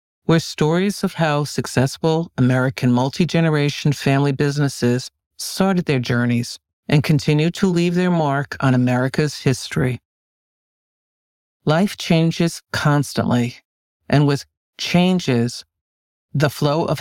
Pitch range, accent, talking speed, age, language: 125-155 Hz, American, 105 wpm, 50-69, English